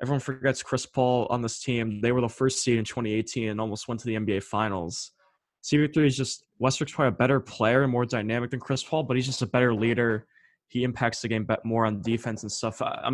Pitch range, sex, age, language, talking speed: 110-130 Hz, male, 20-39, English, 235 wpm